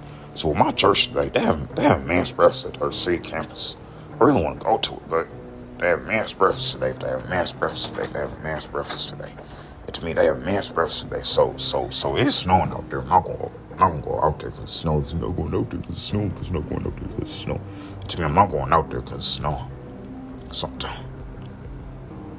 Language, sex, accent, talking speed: English, male, American, 235 wpm